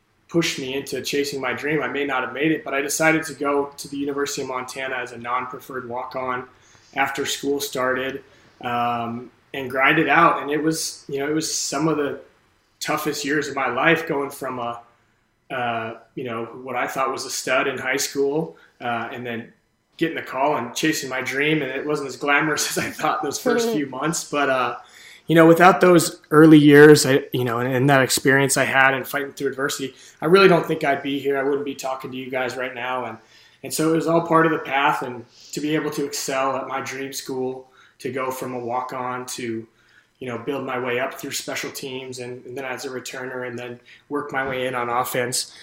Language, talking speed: English, 225 wpm